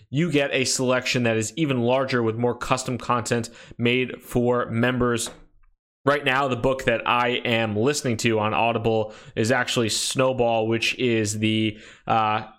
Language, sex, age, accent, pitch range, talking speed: English, male, 20-39, American, 115-130 Hz, 155 wpm